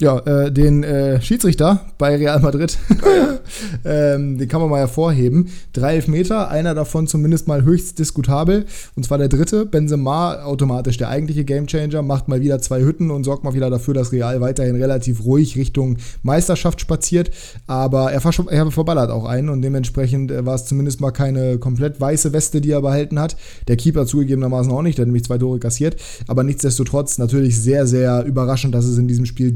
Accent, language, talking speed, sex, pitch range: German, German, 185 wpm, male, 130-155 Hz